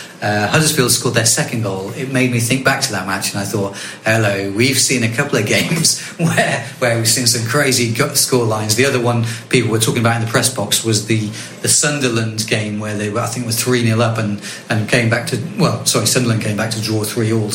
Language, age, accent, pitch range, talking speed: English, 30-49, British, 115-140 Hz, 240 wpm